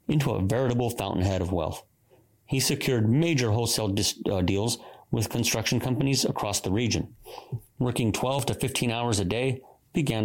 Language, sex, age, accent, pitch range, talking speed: English, male, 30-49, American, 100-130 Hz, 145 wpm